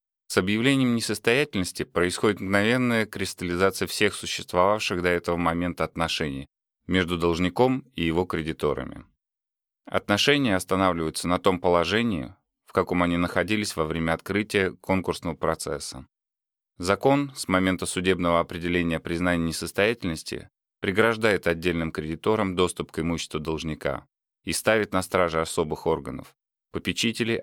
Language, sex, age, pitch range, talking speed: Russian, male, 30-49, 85-100 Hz, 115 wpm